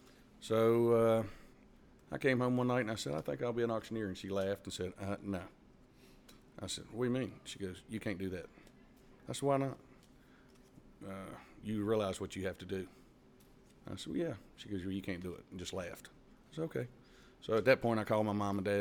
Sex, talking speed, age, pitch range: male, 235 wpm, 40-59, 95-115 Hz